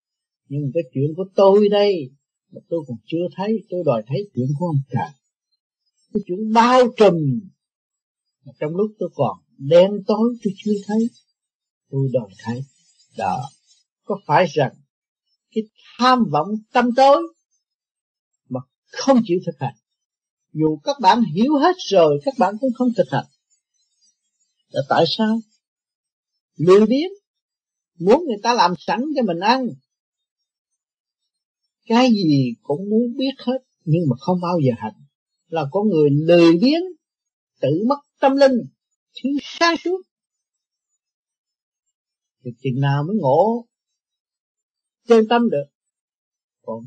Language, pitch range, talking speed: Vietnamese, 155-240 Hz, 135 wpm